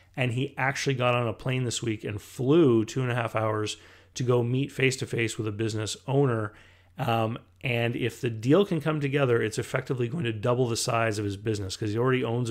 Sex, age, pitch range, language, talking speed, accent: male, 30-49, 110-130 Hz, English, 230 wpm, American